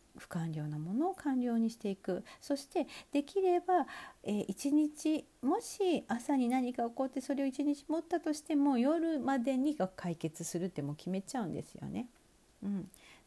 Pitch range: 180-280 Hz